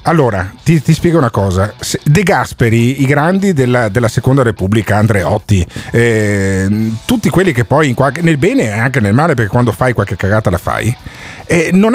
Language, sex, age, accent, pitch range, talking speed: Italian, male, 40-59, native, 105-150 Hz, 185 wpm